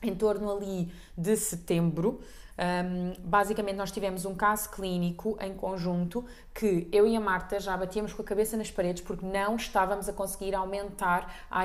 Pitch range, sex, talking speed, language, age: 185-230 Hz, female, 170 wpm, Portuguese, 20-39